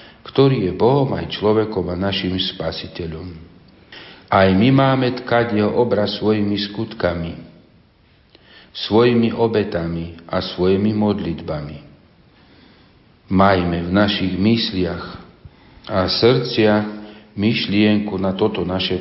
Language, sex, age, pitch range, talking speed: Slovak, male, 50-69, 90-110 Hz, 100 wpm